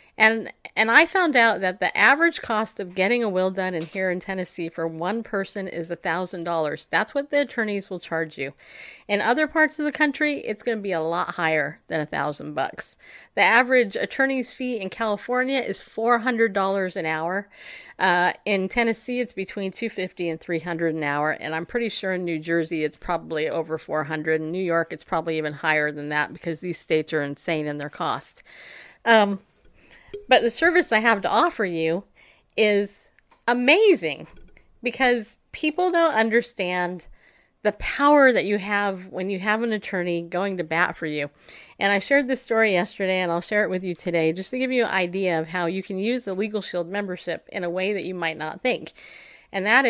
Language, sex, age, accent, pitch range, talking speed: English, female, 50-69, American, 170-230 Hz, 195 wpm